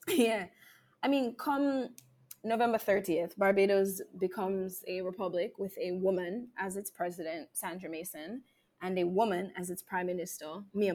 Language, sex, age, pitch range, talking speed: English, female, 20-39, 180-200 Hz, 140 wpm